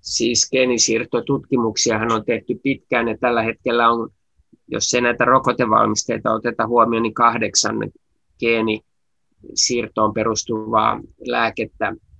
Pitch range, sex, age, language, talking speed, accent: 105-120 Hz, male, 20-39, Finnish, 100 wpm, native